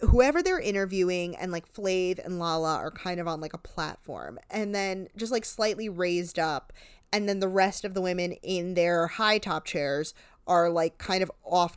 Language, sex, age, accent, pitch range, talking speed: English, female, 20-39, American, 175-225 Hz, 200 wpm